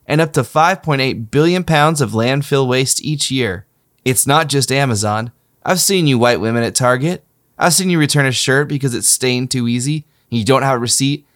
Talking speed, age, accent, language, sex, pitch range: 205 wpm, 20-39, American, English, male, 120-150 Hz